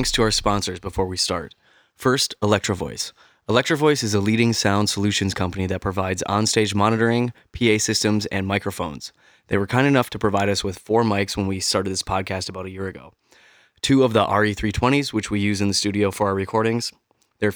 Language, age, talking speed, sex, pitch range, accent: English, 20-39, 200 wpm, male, 95-110 Hz, American